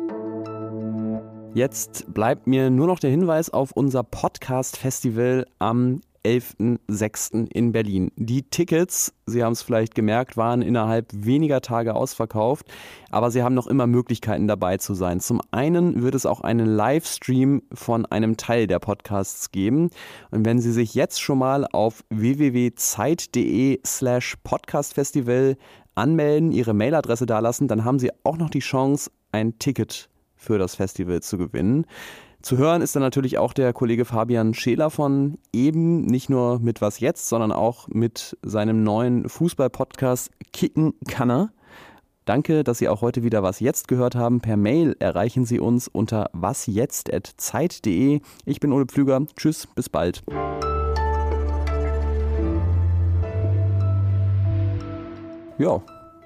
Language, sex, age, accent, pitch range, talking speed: German, male, 30-49, German, 110-135 Hz, 135 wpm